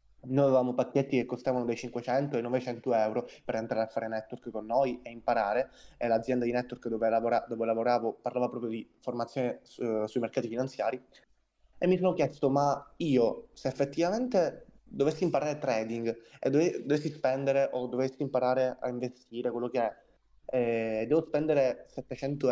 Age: 20-39